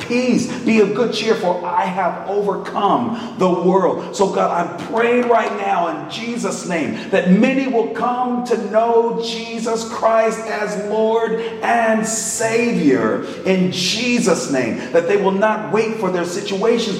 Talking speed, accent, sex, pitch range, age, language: 150 wpm, American, male, 185-230 Hz, 40-59, Filipino